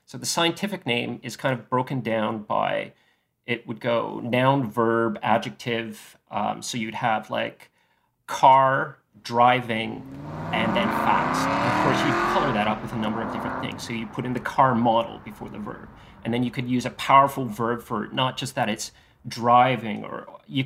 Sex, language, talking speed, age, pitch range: male, English, 190 wpm, 30-49, 115-135 Hz